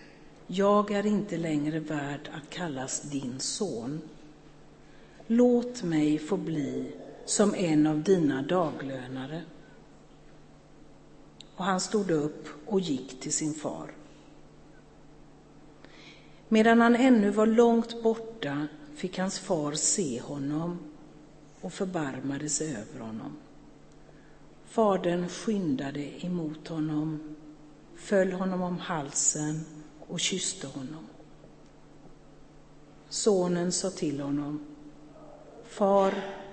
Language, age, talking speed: Swedish, 60-79, 95 wpm